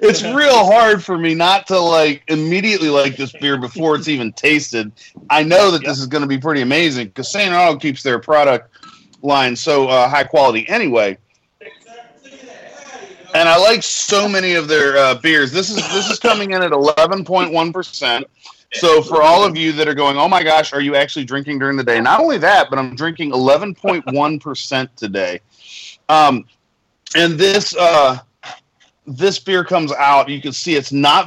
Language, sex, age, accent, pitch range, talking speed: English, male, 40-59, American, 135-170 Hz, 180 wpm